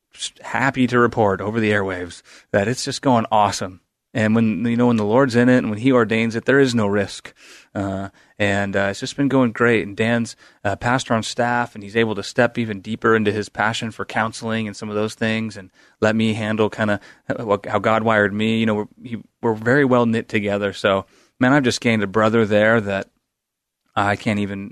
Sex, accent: male, American